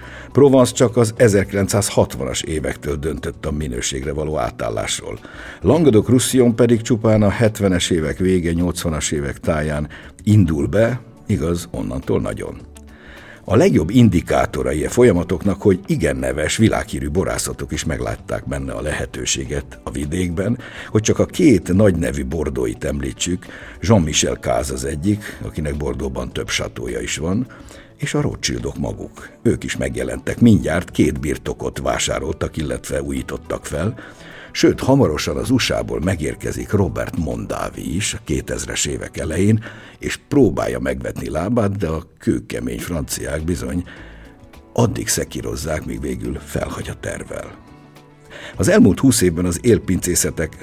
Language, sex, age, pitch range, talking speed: Hungarian, male, 60-79, 75-105 Hz, 125 wpm